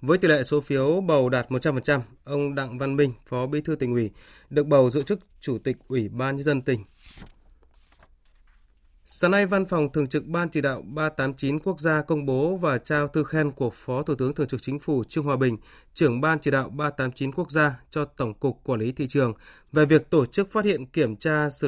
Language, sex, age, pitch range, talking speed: Vietnamese, male, 20-39, 125-155 Hz, 220 wpm